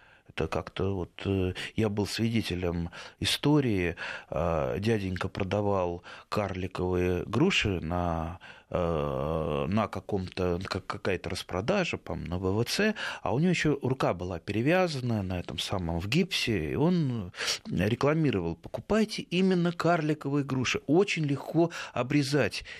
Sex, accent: male, native